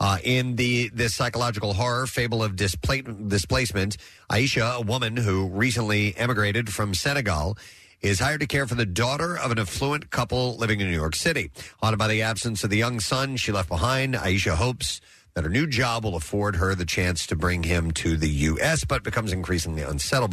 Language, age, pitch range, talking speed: English, 40-59, 90-120 Hz, 190 wpm